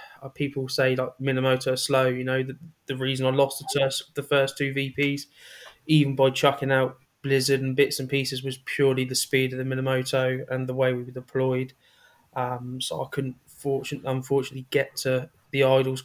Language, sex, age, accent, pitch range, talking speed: English, male, 20-39, British, 130-145 Hz, 190 wpm